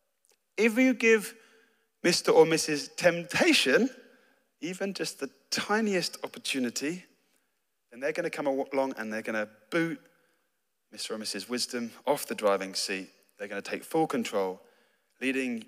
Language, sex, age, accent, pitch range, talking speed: English, male, 20-39, British, 115-165 Hz, 145 wpm